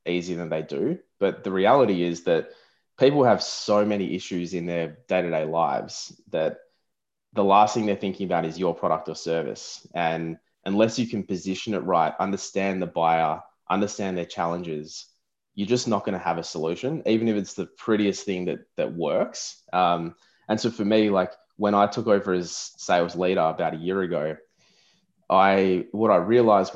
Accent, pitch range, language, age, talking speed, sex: Australian, 85-105 Hz, English, 20-39, 180 wpm, male